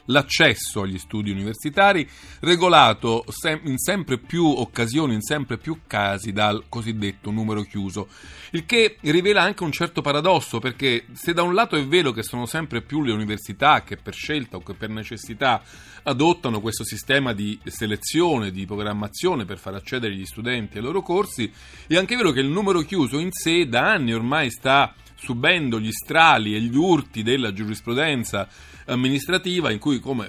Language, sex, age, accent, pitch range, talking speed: Italian, male, 40-59, native, 105-145 Hz, 165 wpm